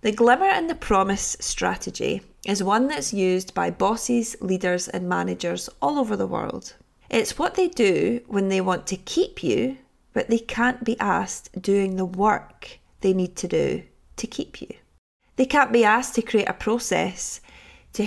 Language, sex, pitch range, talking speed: English, female, 180-230 Hz, 175 wpm